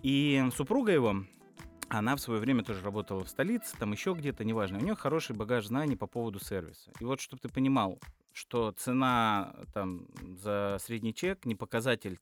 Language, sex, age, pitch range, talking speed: Russian, male, 20-39, 100-130 Hz, 170 wpm